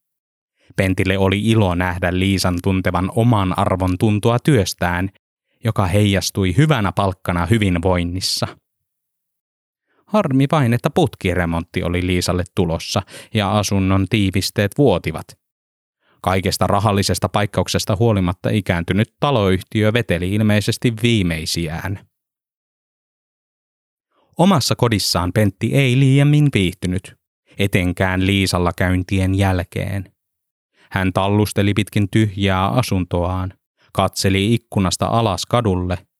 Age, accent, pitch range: 20-39, native, 90-110 Hz